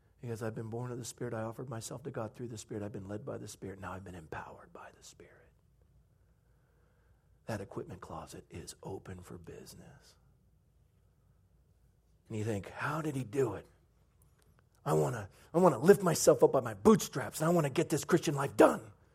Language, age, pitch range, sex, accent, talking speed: English, 40-59, 110-155 Hz, male, American, 195 wpm